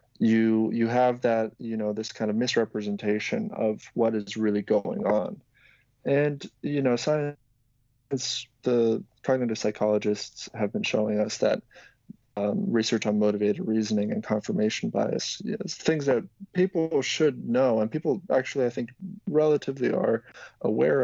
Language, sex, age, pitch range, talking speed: English, male, 30-49, 105-120 Hz, 140 wpm